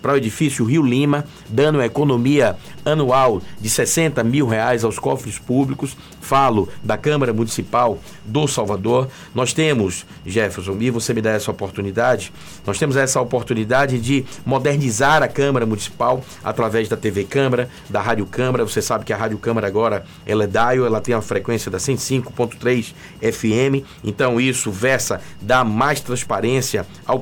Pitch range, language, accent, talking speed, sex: 115-145 Hz, Portuguese, Brazilian, 155 wpm, male